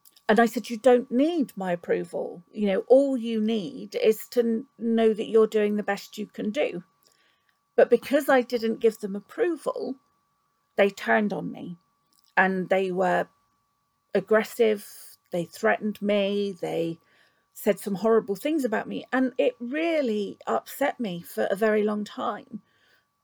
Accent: British